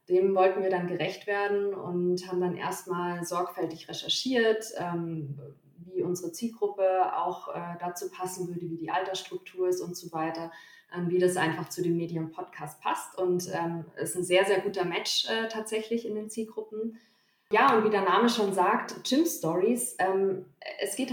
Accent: German